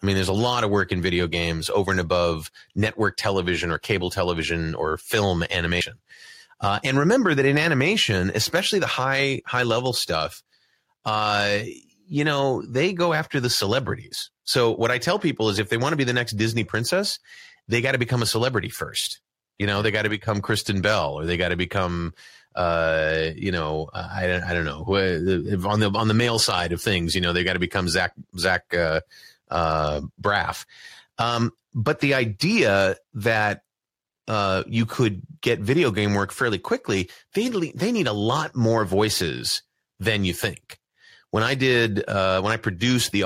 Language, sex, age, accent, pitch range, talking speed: English, male, 30-49, American, 95-125 Hz, 185 wpm